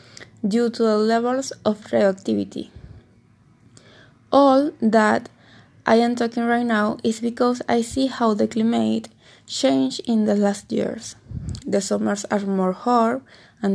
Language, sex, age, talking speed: English, female, 20-39, 135 wpm